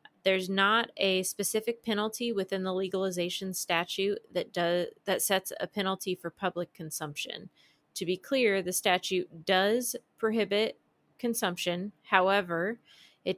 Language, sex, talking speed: English, female, 125 wpm